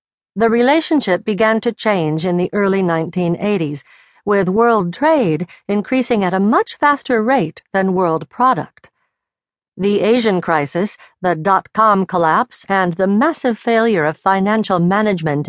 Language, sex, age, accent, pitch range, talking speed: English, female, 50-69, American, 180-235 Hz, 135 wpm